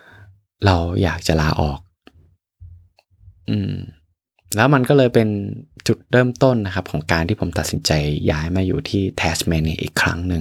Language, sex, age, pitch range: Thai, male, 20-39, 80-100 Hz